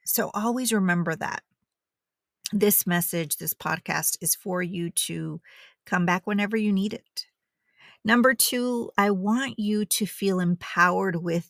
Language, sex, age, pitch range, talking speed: English, female, 40-59, 170-205 Hz, 140 wpm